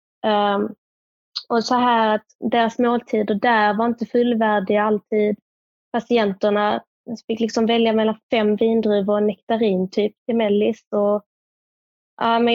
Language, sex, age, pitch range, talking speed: Swedish, female, 20-39, 205-230 Hz, 115 wpm